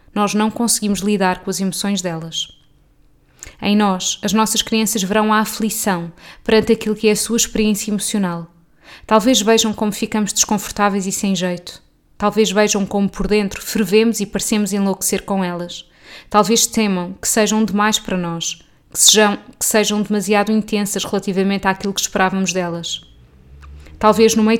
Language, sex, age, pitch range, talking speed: Portuguese, female, 20-39, 190-220 Hz, 155 wpm